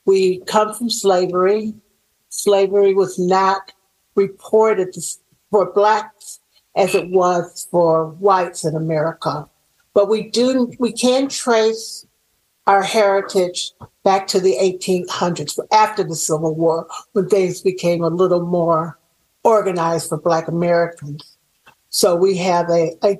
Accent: American